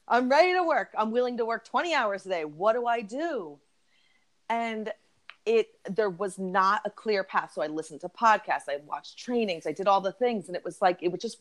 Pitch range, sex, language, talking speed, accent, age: 155-195 Hz, female, English, 225 wpm, American, 30-49